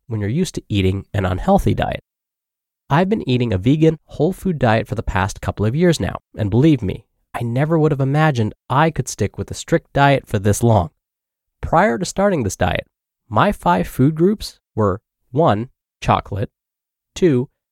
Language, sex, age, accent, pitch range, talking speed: English, male, 20-39, American, 105-155 Hz, 185 wpm